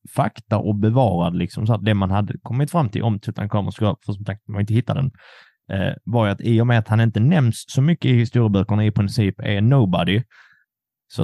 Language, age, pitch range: Swedish, 30-49, 100-125 Hz